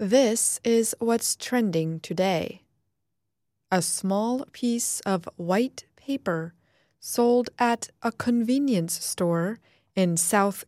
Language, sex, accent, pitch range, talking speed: English, female, American, 170-220 Hz, 100 wpm